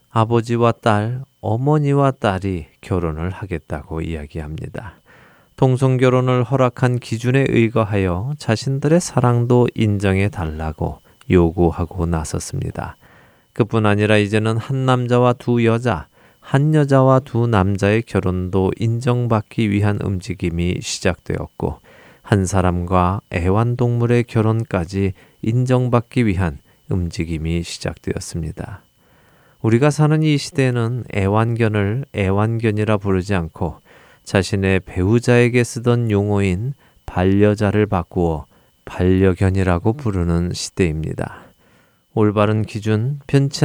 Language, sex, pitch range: Korean, male, 95-120 Hz